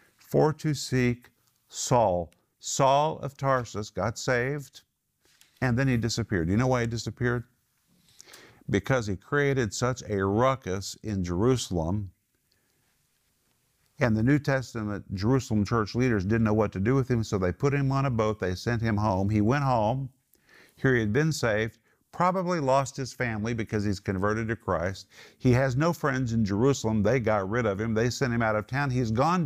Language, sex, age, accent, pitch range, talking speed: English, male, 50-69, American, 105-135 Hz, 175 wpm